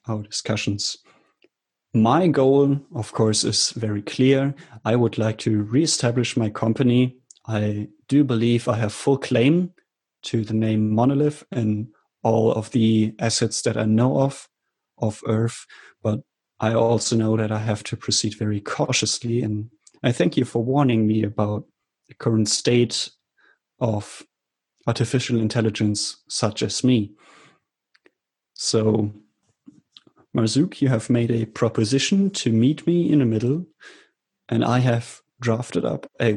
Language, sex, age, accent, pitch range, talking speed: English, male, 30-49, German, 110-130 Hz, 140 wpm